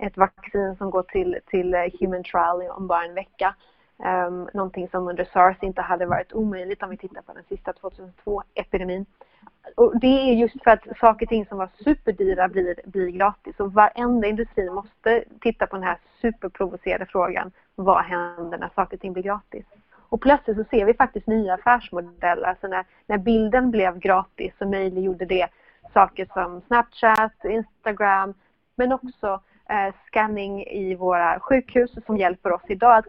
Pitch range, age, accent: 185-220 Hz, 30-49, native